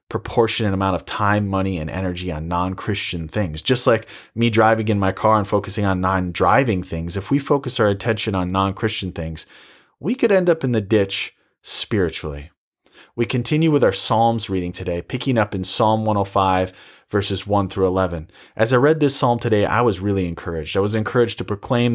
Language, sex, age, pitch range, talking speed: English, male, 30-49, 95-115 Hz, 195 wpm